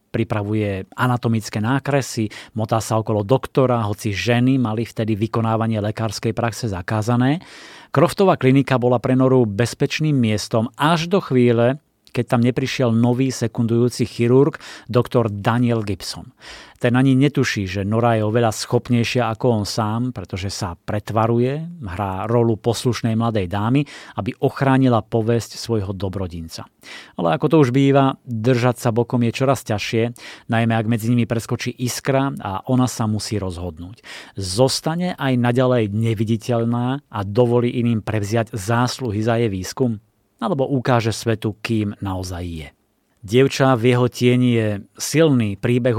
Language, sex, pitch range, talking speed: Slovak, male, 110-130 Hz, 135 wpm